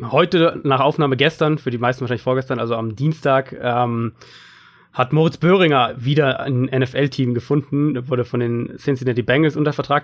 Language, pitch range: German, 125-155 Hz